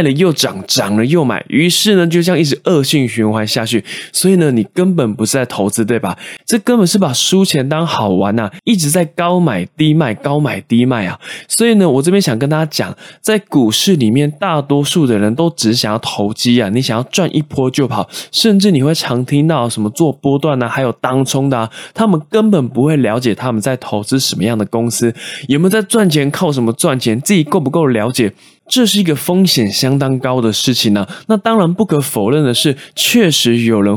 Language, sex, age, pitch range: Chinese, male, 20-39, 115-175 Hz